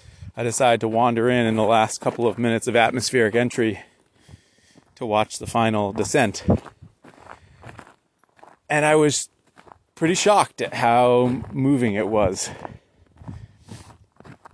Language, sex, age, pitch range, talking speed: English, male, 30-49, 110-130 Hz, 120 wpm